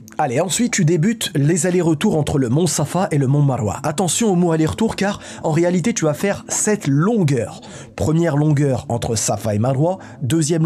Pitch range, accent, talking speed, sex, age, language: 140-180 Hz, French, 185 wpm, male, 20-39, French